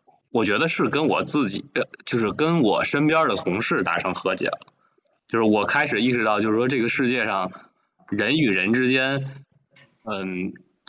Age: 20-39